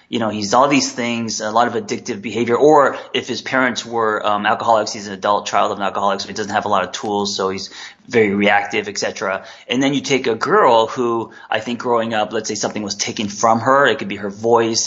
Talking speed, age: 245 wpm, 20-39